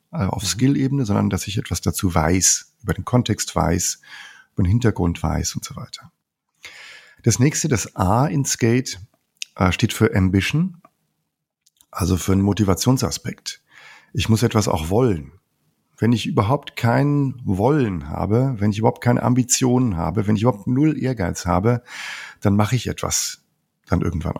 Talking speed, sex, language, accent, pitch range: 150 wpm, male, German, German, 95-125 Hz